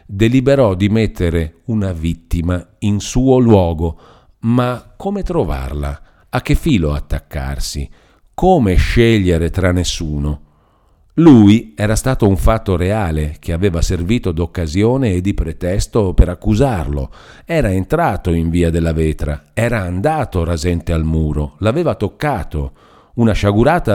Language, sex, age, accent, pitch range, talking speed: Italian, male, 50-69, native, 85-120 Hz, 125 wpm